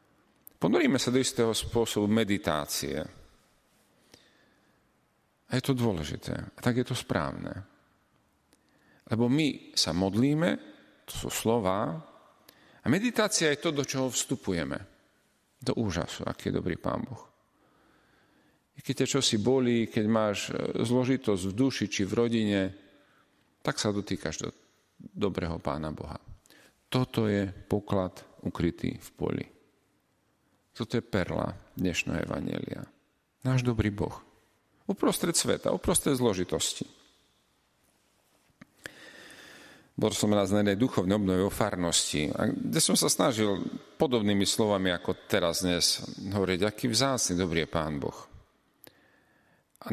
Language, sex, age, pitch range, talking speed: Slovak, male, 40-59, 90-120 Hz, 120 wpm